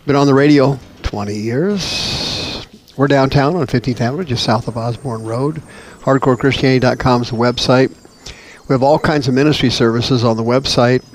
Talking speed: 160 wpm